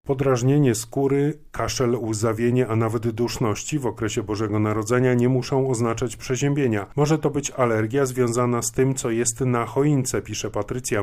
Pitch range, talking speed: 115-130 Hz, 150 wpm